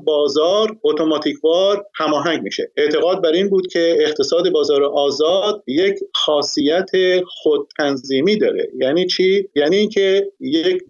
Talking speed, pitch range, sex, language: 115 wpm, 150-215 Hz, male, Persian